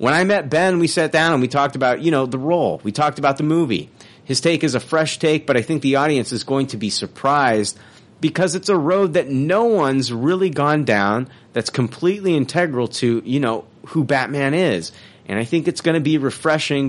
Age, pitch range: 30-49, 110-150 Hz